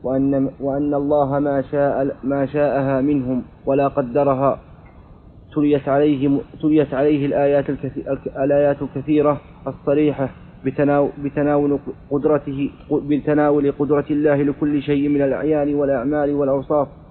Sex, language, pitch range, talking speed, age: male, Arabic, 135-145 Hz, 100 wpm, 30-49